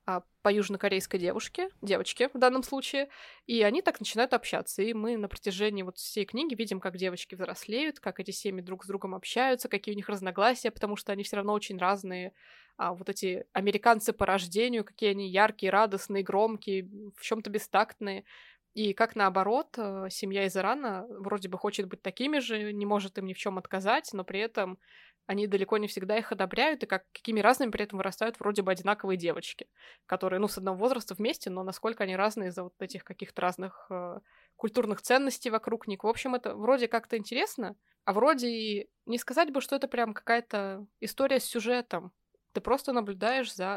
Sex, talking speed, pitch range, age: female, 190 wpm, 195-235 Hz, 20-39